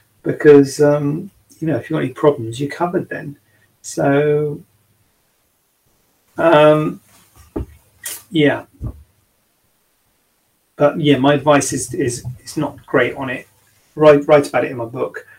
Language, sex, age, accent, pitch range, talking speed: English, male, 40-59, British, 120-150 Hz, 130 wpm